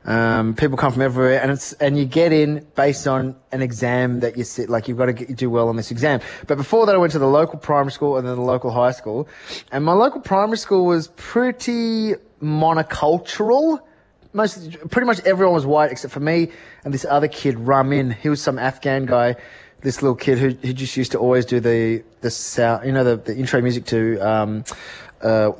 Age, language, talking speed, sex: 20-39, English, 220 wpm, male